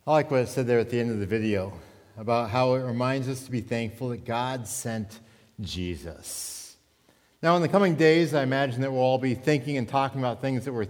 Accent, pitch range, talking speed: American, 115-160 Hz, 230 wpm